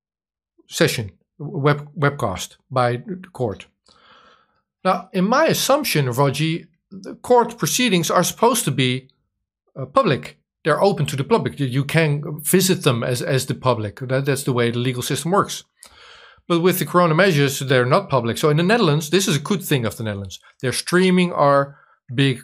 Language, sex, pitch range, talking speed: Dutch, male, 125-165 Hz, 175 wpm